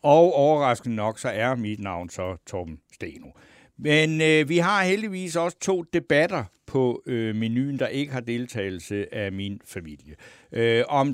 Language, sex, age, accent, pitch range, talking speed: Danish, male, 60-79, native, 105-150 Hz, 145 wpm